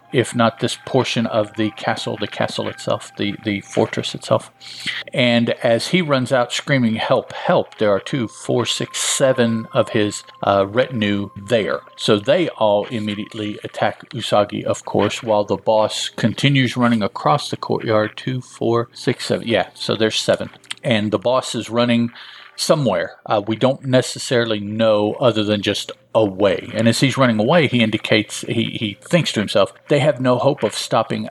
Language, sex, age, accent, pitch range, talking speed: English, male, 50-69, American, 110-130 Hz, 170 wpm